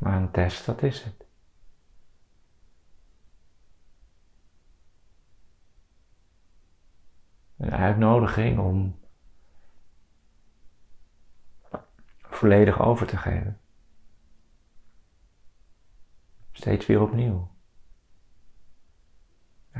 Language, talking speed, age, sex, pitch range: Dutch, 50 wpm, 40-59, male, 80-105 Hz